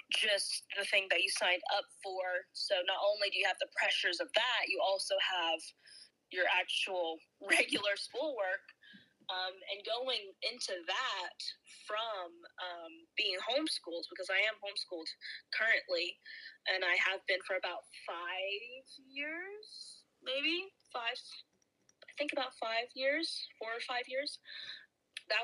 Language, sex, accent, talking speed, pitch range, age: English, female, American, 140 wpm, 190-270 Hz, 20-39